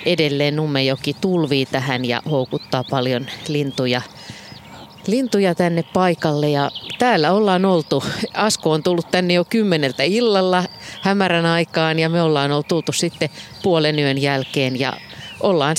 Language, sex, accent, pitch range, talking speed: Finnish, female, native, 145-180 Hz, 130 wpm